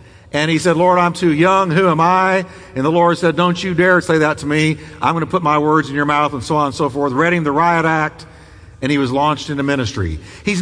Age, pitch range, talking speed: 50-69, 115-195 Hz, 270 wpm